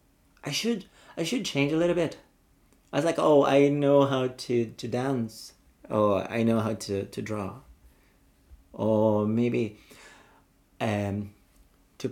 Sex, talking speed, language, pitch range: male, 145 wpm, English, 105-130 Hz